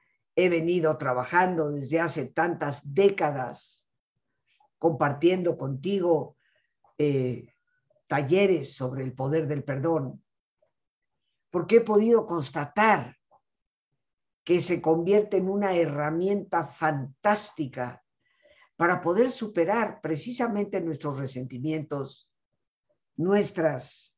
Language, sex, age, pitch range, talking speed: Spanish, female, 50-69, 140-190 Hz, 85 wpm